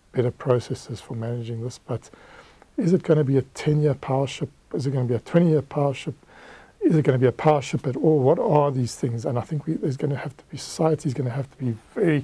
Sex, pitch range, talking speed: male, 120-145 Hz, 270 wpm